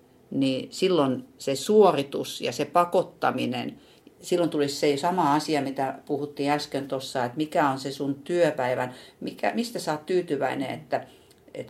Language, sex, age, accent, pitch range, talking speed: Finnish, female, 50-69, native, 140-185 Hz, 145 wpm